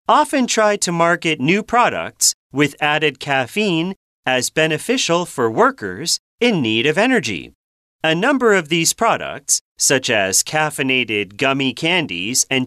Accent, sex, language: American, male, Chinese